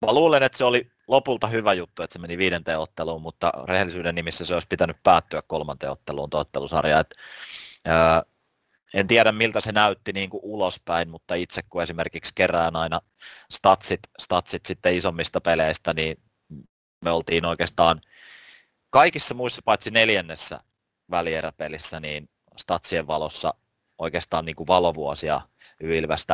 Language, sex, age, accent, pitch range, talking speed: Finnish, male, 30-49, native, 80-100 Hz, 135 wpm